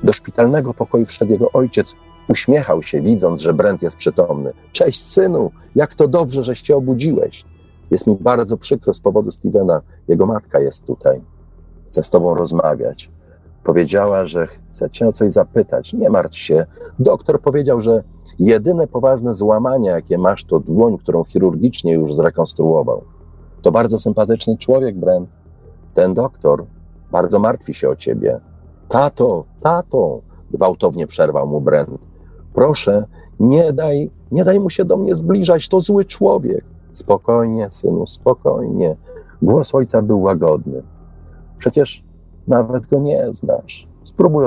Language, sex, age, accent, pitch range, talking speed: Polish, male, 40-59, native, 80-135 Hz, 140 wpm